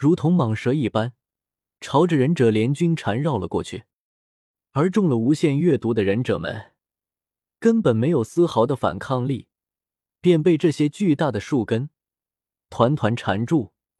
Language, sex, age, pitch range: Chinese, male, 20-39, 110-160 Hz